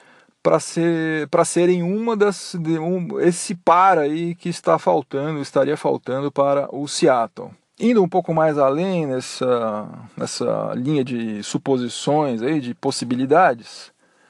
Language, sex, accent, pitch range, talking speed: Portuguese, male, Brazilian, 135-170 Hz, 130 wpm